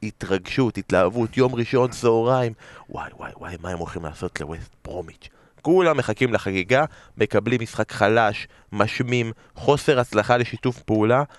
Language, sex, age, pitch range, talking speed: Hebrew, male, 20-39, 105-130 Hz, 130 wpm